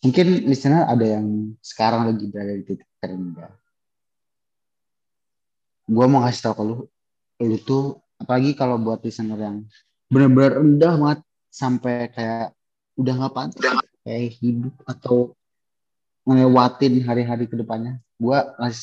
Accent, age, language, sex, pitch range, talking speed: native, 20-39, Indonesian, male, 110-130 Hz, 125 wpm